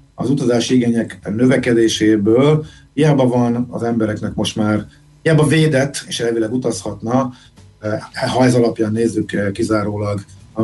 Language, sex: Hungarian, male